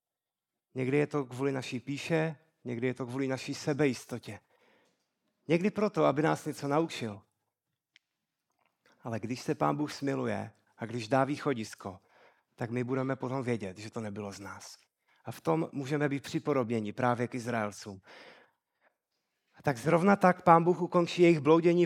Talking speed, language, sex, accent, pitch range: 150 wpm, Czech, male, native, 130-185 Hz